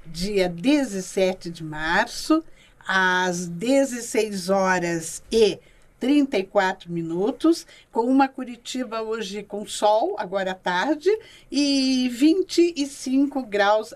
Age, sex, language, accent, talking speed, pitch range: 50-69, female, Portuguese, Brazilian, 95 wpm, 195-260 Hz